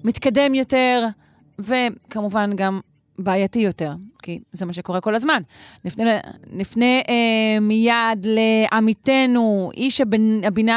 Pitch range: 195-240 Hz